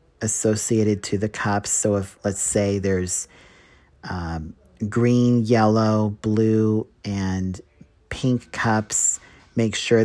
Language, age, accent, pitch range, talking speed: English, 40-59, American, 95-115 Hz, 105 wpm